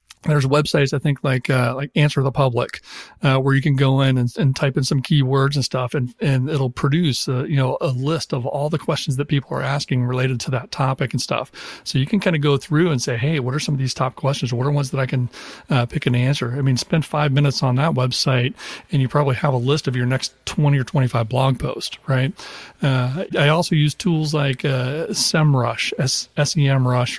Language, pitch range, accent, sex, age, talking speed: English, 130-145 Hz, American, male, 40-59, 235 wpm